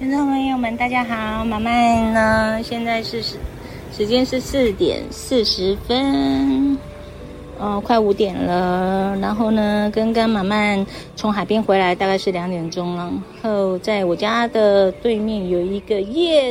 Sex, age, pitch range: female, 30-49, 195-250 Hz